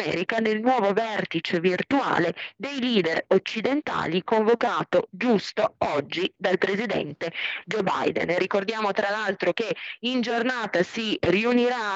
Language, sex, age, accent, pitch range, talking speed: Italian, female, 30-49, native, 175-215 Hz, 120 wpm